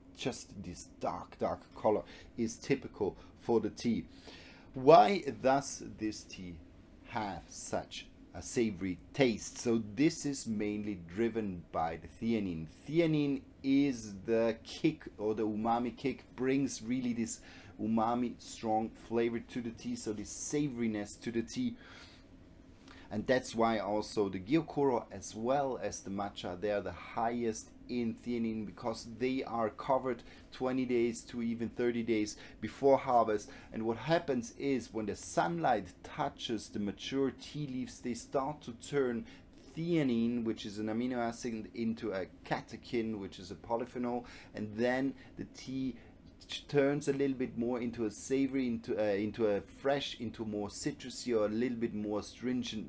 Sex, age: male, 30-49